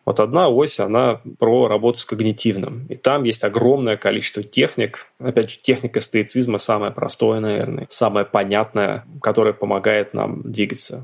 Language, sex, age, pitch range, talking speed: Russian, male, 20-39, 105-125 Hz, 145 wpm